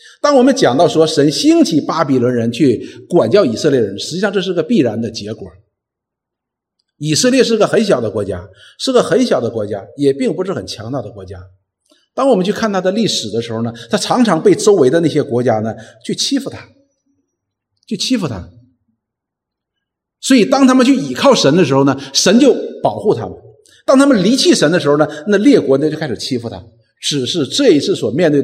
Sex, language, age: male, Chinese, 50-69